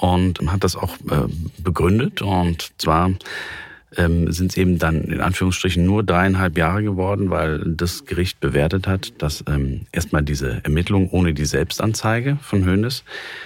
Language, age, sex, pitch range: German, 40-59, male, 75-100 Hz